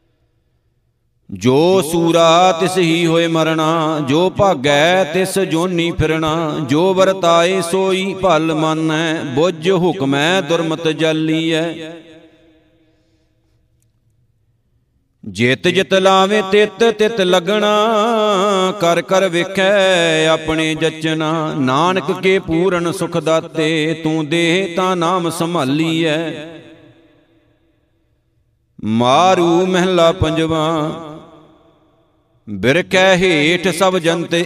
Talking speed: 85 wpm